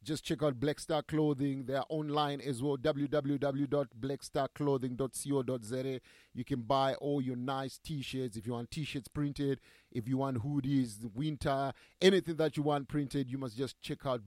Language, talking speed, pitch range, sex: English, 160 wpm, 135-170 Hz, male